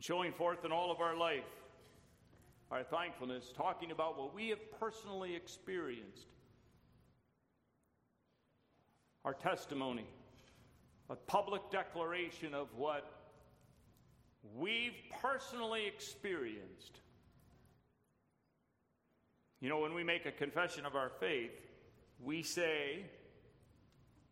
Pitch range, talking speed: 130-170 Hz, 95 wpm